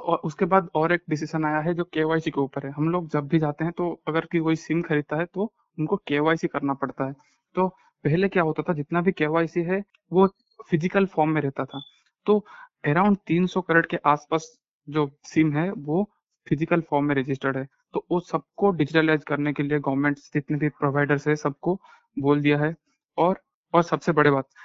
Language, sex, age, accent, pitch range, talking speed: Hindi, male, 20-39, native, 145-170 Hz, 195 wpm